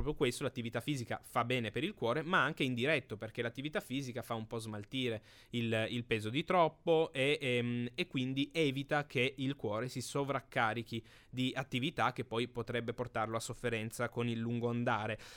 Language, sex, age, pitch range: Italian, male, 20-39, 115-145 Hz